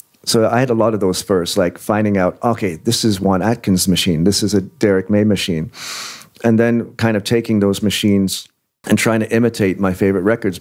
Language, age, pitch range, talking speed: English, 40-59, 95-110 Hz, 210 wpm